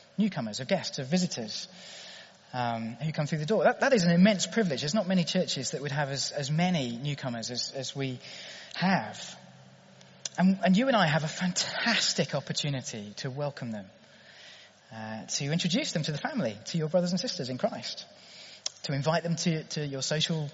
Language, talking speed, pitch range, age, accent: English, 190 wpm, 140-200 Hz, 30-49, British